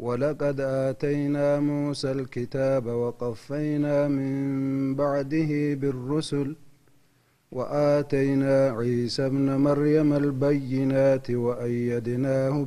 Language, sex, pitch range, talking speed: Amharic, male, 125-145 Hz, 65 wpm